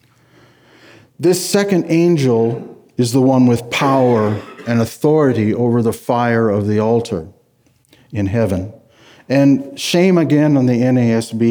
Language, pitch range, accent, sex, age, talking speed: English, 110-140 Hz, American, male, 60-79, 125 wpm